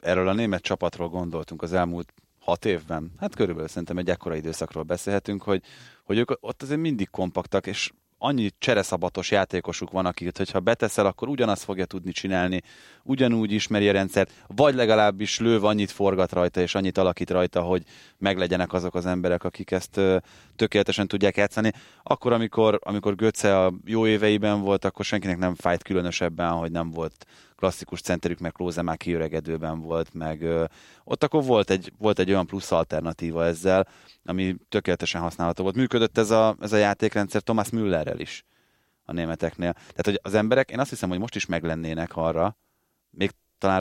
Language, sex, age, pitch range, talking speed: Hungarian, male, 30-49, 85-105 Hz, 165 wpm